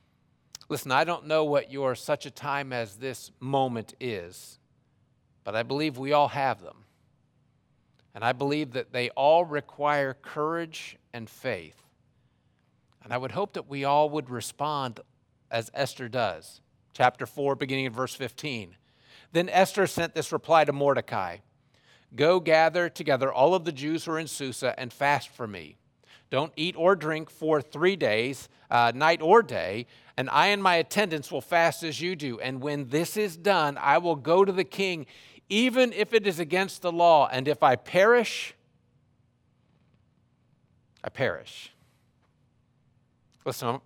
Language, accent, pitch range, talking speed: English, American, 130-165 Hz, 160 wpm